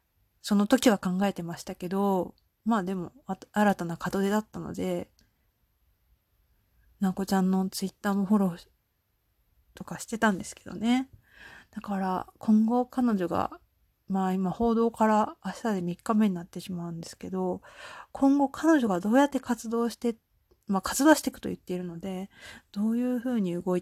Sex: female